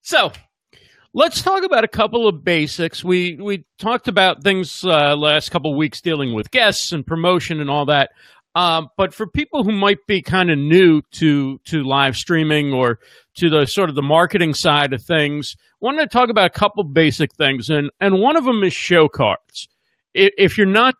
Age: 40-59